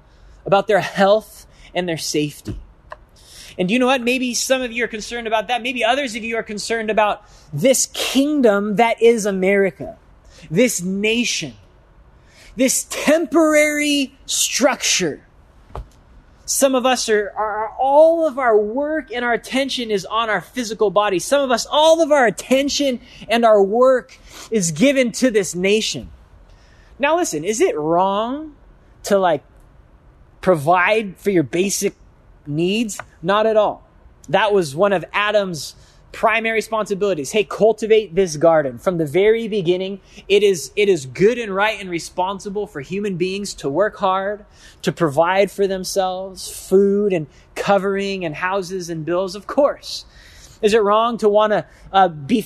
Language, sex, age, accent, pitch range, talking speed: English, male, 20-39, American, 185-240 Hz, 150 wpm